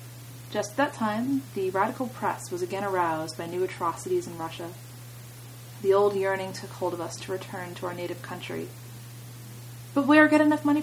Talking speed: 185 wpm